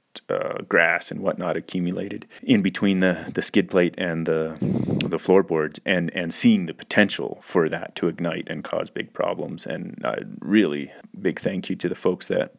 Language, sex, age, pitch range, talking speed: English, male, 30-49, 85-95 Hz, 180 wpm